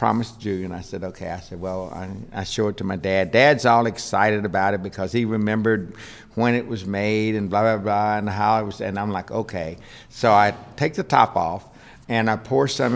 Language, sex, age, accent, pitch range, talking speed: English, male, 60-79, American, 100-135 Hz, 220 wpm